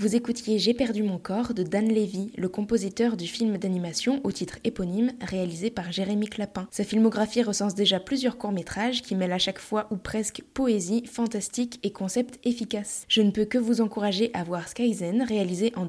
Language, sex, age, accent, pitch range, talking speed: French, female, 20-39, French, 195-235 Hz, 190 wpm